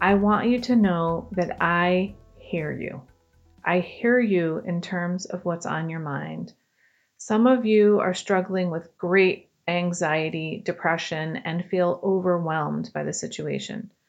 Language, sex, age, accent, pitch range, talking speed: English, female, 30-49, American, 170-205 Hz, 145 wpm